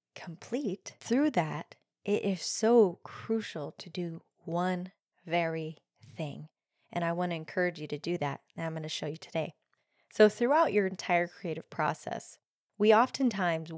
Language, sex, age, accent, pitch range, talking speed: English, female, 20-39, American, 175-230 Hz, 155 wpm